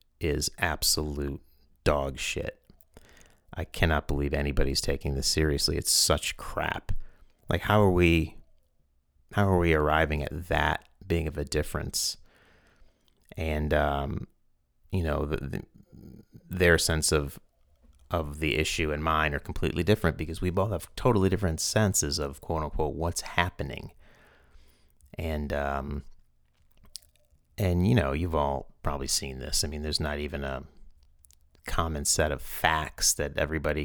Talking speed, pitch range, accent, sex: 140 wpm, 70-85 Hz, American, male